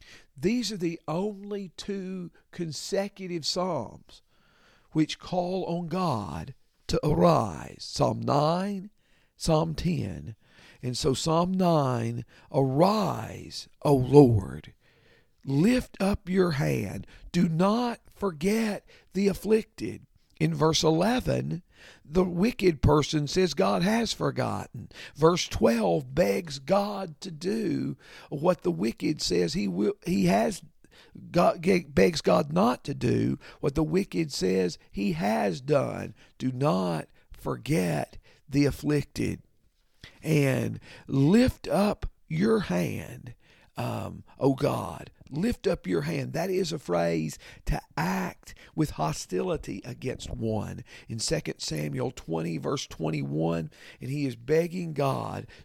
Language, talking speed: English, 115 wpm